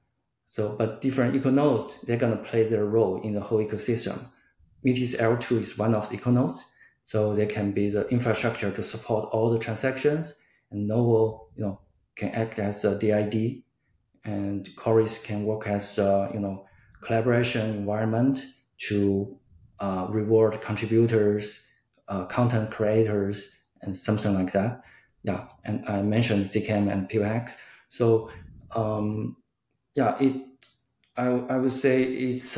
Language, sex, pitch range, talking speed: English, male, 100-115 Hz, 145 wpm